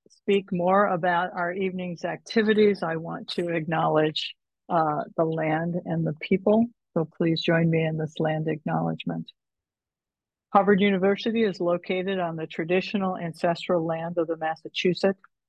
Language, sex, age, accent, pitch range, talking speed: English, female, 50-69, American, 170-195 Hz, 140 wpm